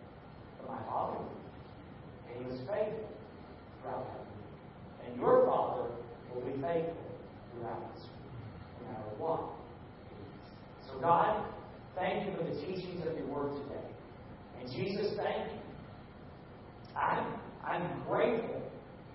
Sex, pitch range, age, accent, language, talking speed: male, 125-150 Hz, 40-59, American, English, 115 wpm